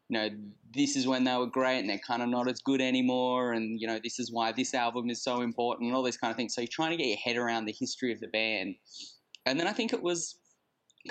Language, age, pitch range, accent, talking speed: English, 10-29, 110-125 Hz, Australian, 280 wpm